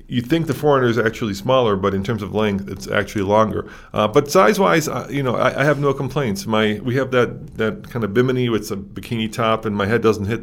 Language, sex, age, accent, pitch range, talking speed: English, male, 40-59, American, 105-125 Hz, 245 wpm